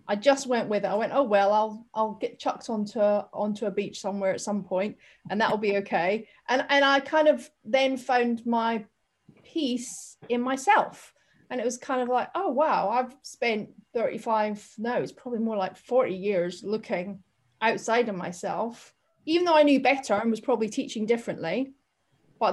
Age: 30-49